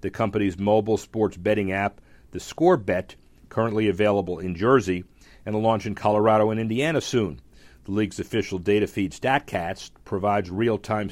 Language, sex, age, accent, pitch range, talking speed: English, male, 50-69, American, 100-120 Hz, 155 wpm